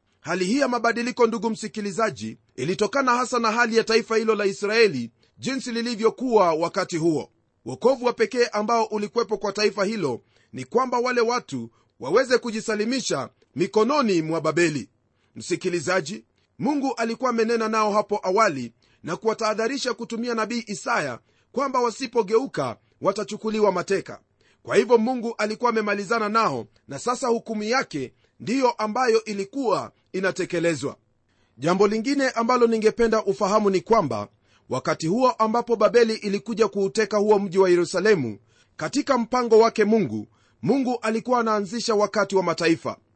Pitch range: 175-235 Hz